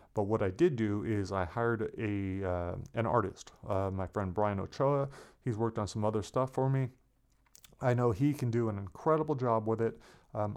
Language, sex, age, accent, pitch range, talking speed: English, male, 30-49, American, 105-125 Hz, 205 wpm